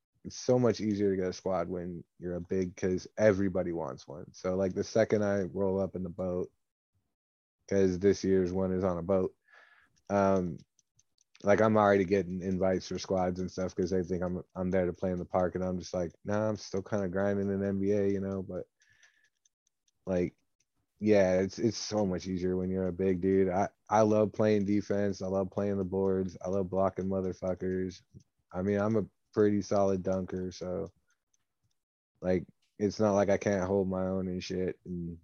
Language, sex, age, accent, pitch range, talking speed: English, male, 20-39, American, 90-100 Hz, 200 wpm